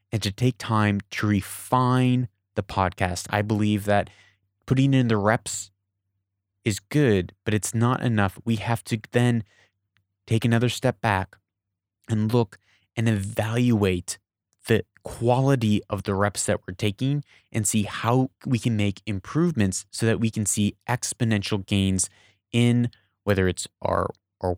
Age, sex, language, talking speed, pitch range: 20-39, male, English, 145 wpm, 100-115 Hz